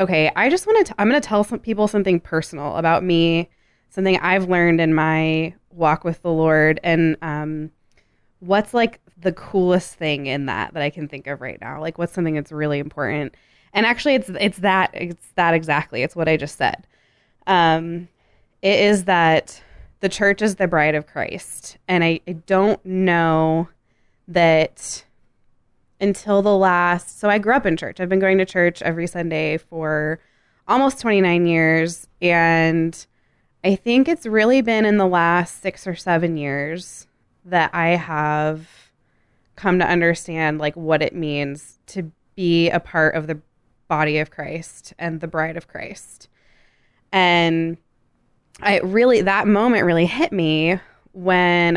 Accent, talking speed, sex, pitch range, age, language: American, 165 wpm, female, 155-190 Hz, 20-39, English